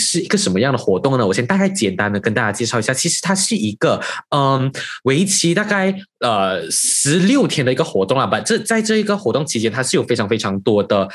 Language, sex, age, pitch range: Chinese, male, 20-39, 110-175 Hz